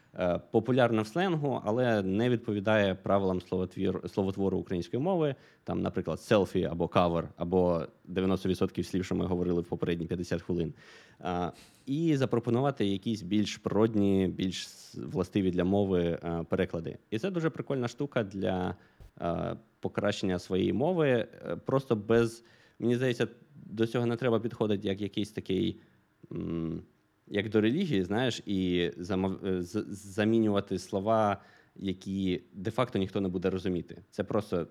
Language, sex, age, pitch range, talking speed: Ukrainian, male, 20-39, 90-110 Hz, 125 wpm